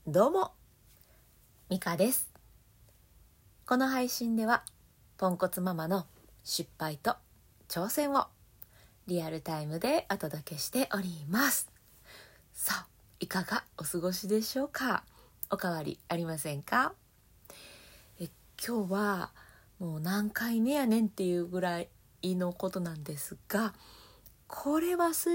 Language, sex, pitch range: Japanese, female, 165-225 Hz